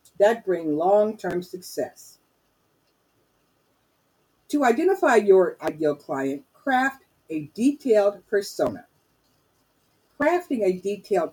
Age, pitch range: 60-79, 180-265 Hz